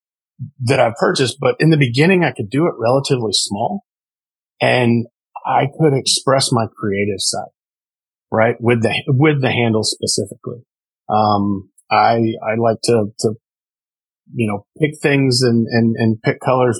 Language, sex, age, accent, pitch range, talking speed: English, male, 40-59, American, 110-125 Hz, 150 wpm